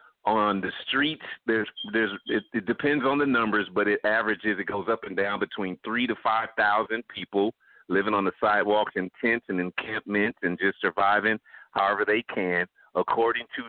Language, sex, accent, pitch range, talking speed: English, male, American, 100-115 Hz, 175 wpm